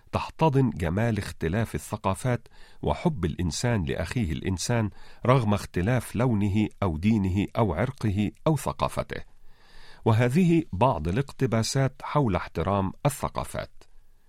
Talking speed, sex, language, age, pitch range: 95 wpm, male, Arabic, 40-59, 90-125 Hz